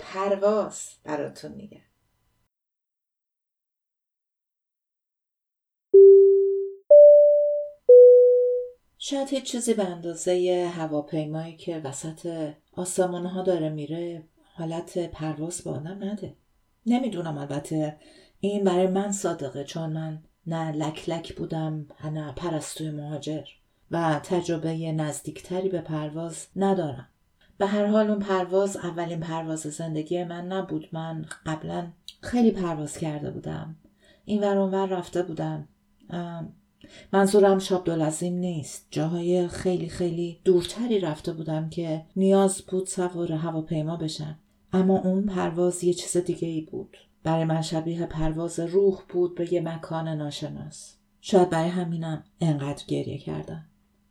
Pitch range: 160-195 Hz